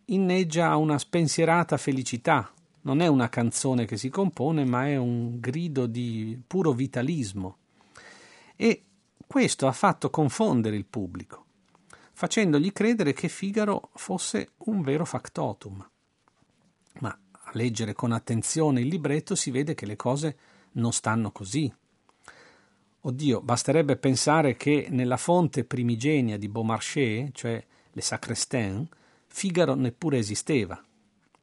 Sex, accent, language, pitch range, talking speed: male, native, Italian, 115-160 Hz, 120 wpm